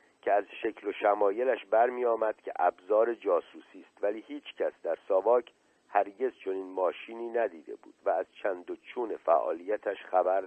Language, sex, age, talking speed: Persian, male, 50-69, 145 wpm